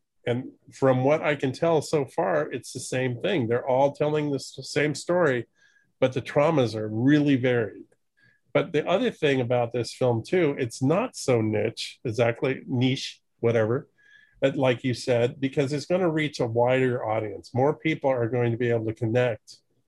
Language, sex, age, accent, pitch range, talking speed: English, male, 40-59, American, 120-150 Hz, 180 wpm